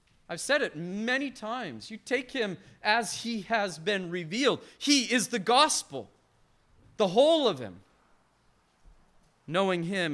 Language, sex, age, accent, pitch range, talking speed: English, male, 40-59, American, 170-235 Hz, 135 wpm